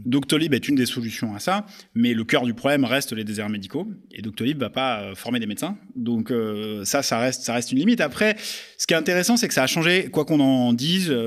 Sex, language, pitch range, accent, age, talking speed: male, French, 115-145 Hz, French, 30-49, 250 wpm